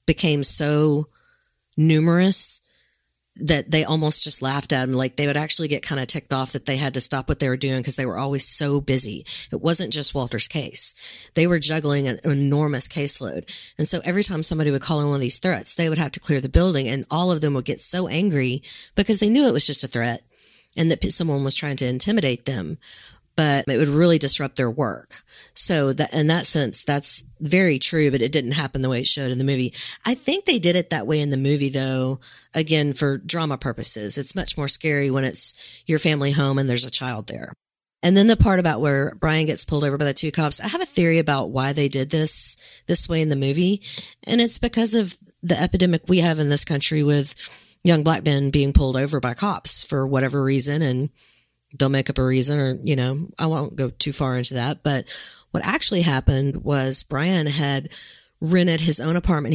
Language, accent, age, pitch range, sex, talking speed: English, American, 40-59, 135-160 Hz, female, 220 wpm